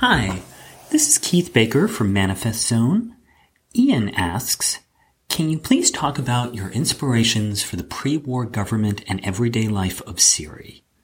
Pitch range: 95-120 Hz